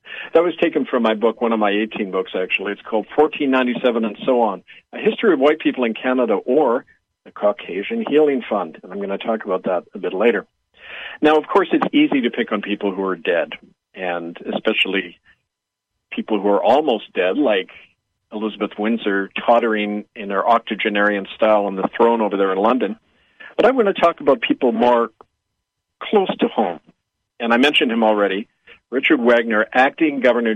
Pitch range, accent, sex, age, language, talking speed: 105-150 Hz, American, male, 50-69, English, 185 wpm